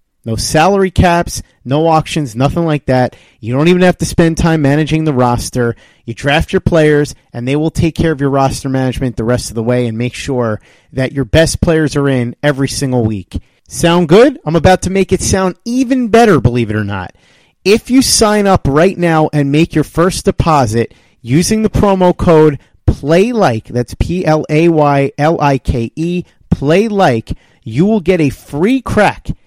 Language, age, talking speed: English, 30-49, 175 wpm